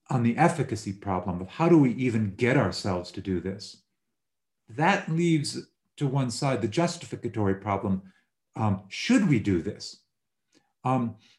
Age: 50-69